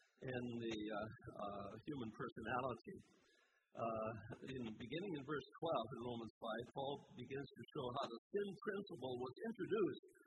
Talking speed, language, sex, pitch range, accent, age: 145 wpm, English, male, 120-175 Hz, American, 50-69